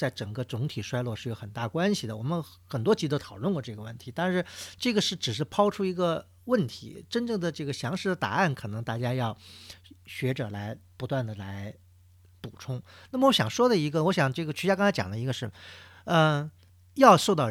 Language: Chinese